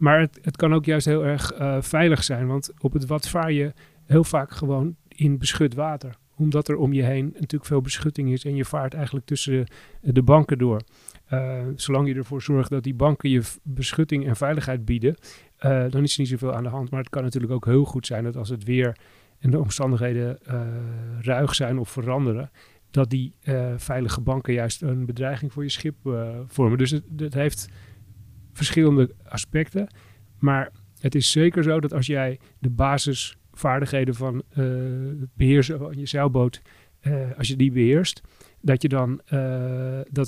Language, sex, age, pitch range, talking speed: Dutch, male, 40-59, 130-145 Hz, 190 wpm